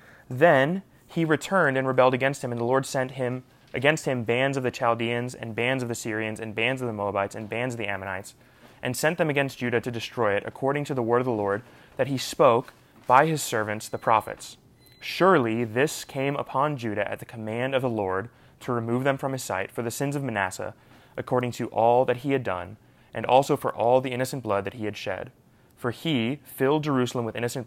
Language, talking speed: English, 220 wpm